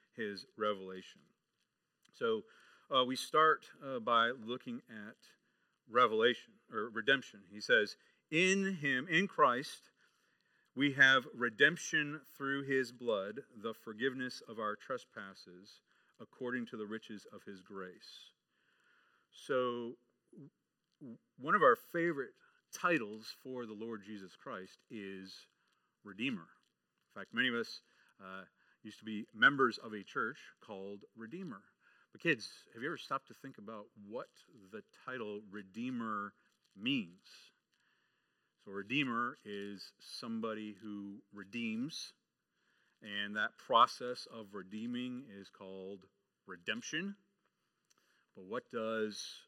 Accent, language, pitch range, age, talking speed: American, English, 105-145 Hz, 40-59, 115 wpm